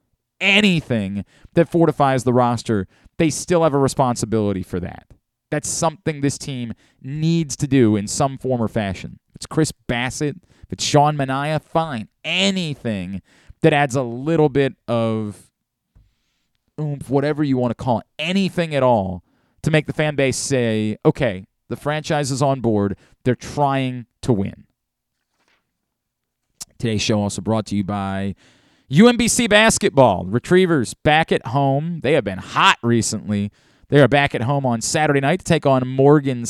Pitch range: 115-155 Hz